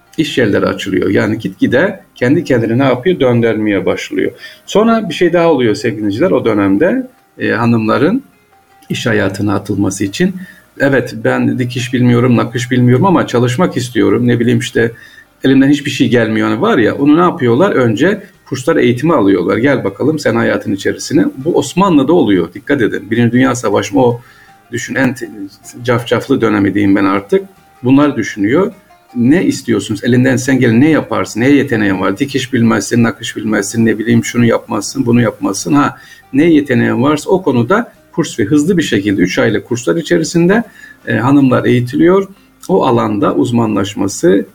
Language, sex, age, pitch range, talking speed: Turkish, male, 50-69, 110-150 Hz, 155 wpm